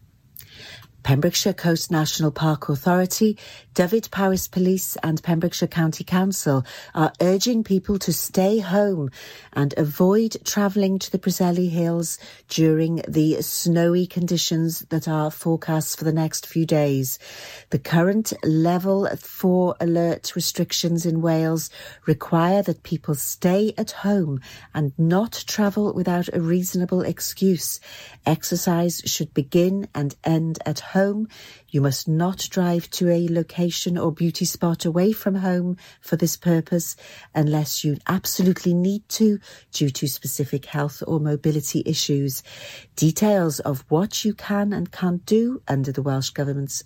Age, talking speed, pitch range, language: 50-69, 135 wpm, 145-180 Hz, English